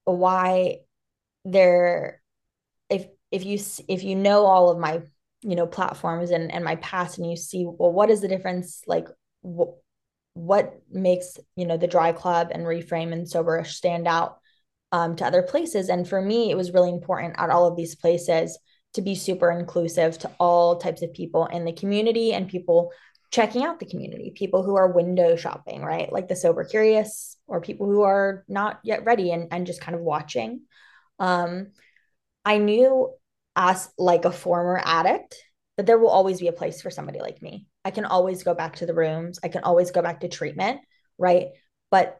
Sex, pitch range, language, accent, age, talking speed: female, 175-205 Hz, English, American, 20-39, 190 wpm